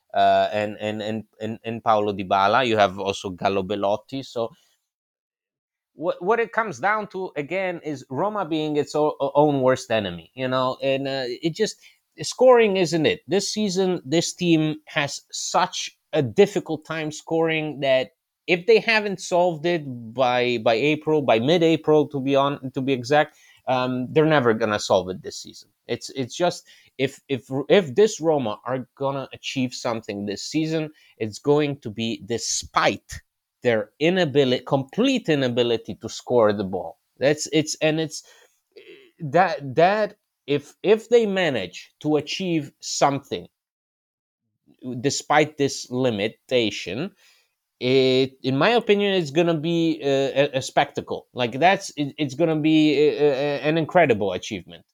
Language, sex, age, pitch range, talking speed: English, male, 30-49, 130-170 Hz, 155 wpm